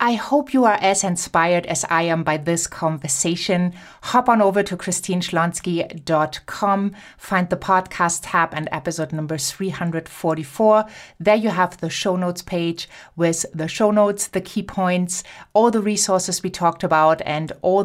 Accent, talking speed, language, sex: German, 160 wpm, English, female